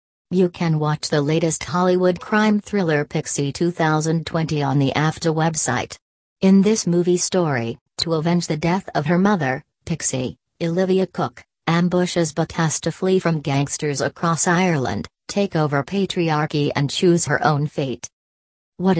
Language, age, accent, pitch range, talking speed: English, 40-59, American, 150-185 Hz, 145 wpm